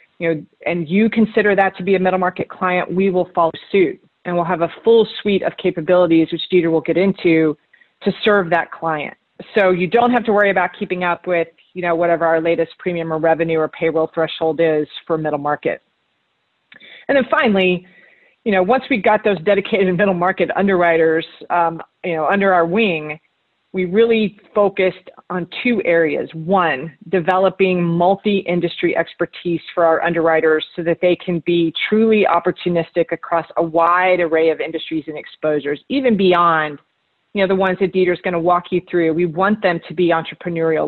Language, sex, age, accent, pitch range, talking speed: English, female, 30-49, American, 165-195 Hz, 180 wpm